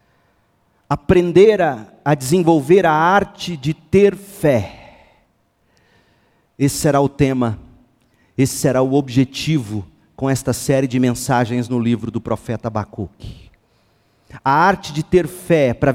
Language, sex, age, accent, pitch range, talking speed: Portuguese, male, 40-59, Brazilian, 125-175 Hz, 125 wpm